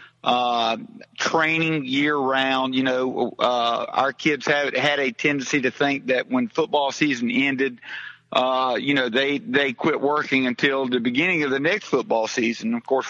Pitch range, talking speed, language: 130-145 Hz, 170 wpm, English